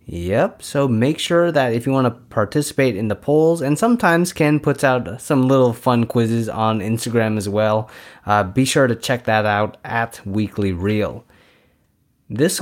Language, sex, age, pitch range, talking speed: English, male, 20-39, 115-155 Hz, 175 wpm